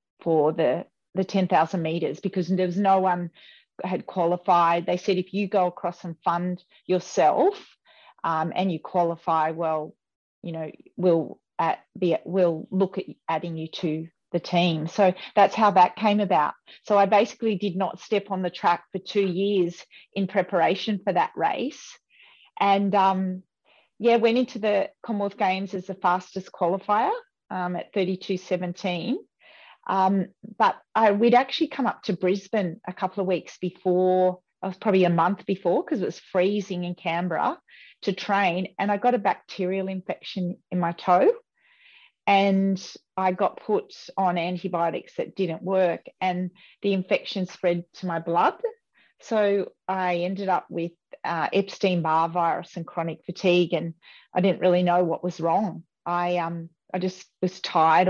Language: English